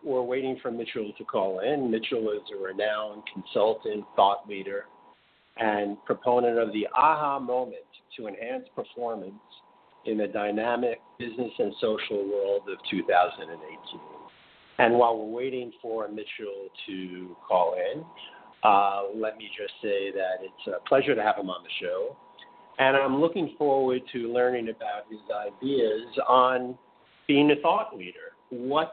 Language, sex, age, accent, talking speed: English, male, 50-69, American, 145 wpm